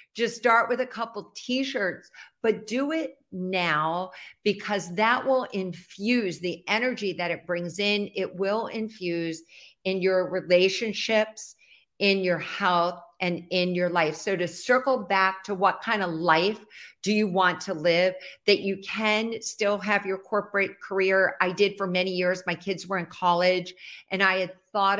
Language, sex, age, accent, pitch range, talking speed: English, female, 50-69, American, 180-215 Hz, 170 wpm